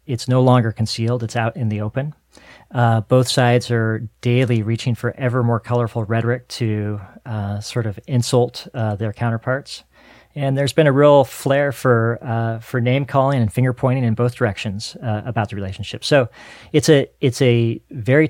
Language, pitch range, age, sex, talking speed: English, 110-130 Hz, 40-59, male, 180 wpm